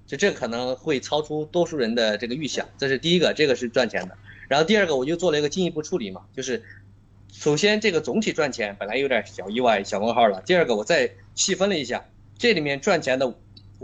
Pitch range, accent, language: 105-165 Hz, native, Chinese